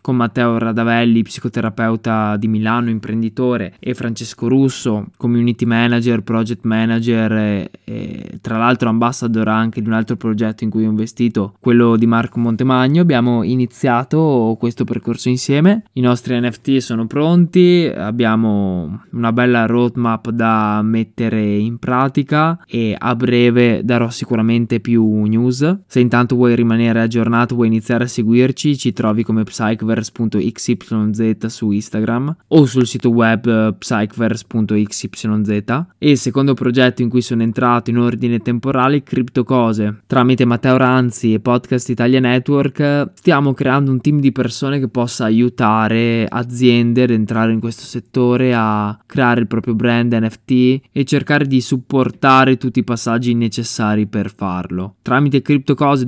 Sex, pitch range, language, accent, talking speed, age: male, 115-125 Hz, Italian, native, 145 wpm, 20-39